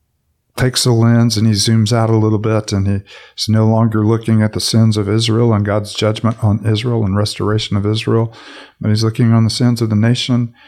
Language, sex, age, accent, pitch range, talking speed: English, male, 50-69, American, 105-115 Hz, 215 wpm